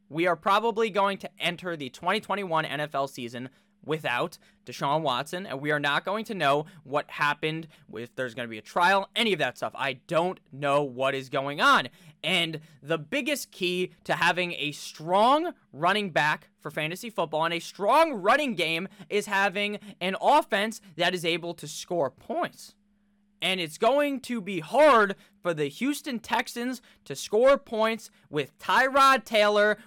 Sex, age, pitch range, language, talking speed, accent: male, 20-39, 155-225 Hz, English, 170 wpm, American